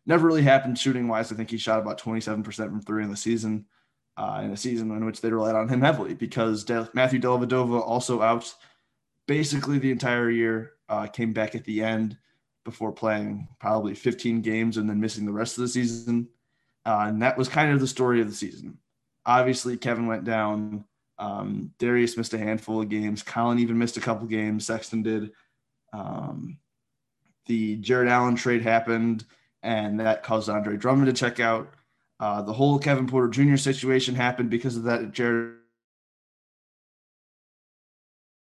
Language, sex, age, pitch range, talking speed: English, male, 20-39, 110-125 Hz, 175 wpm